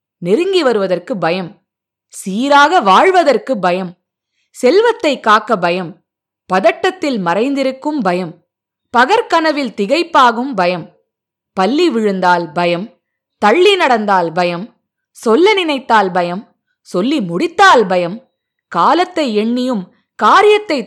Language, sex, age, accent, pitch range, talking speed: Tamil, female, 20-39, native, 190-300 Hz, 90 wpm